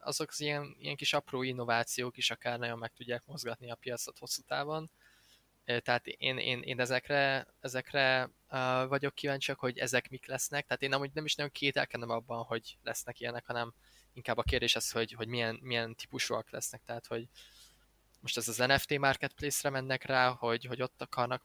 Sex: male